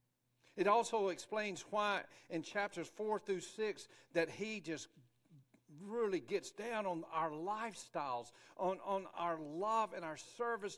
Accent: American